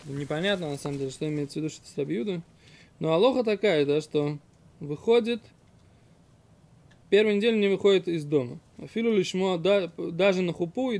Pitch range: 150-200 Hz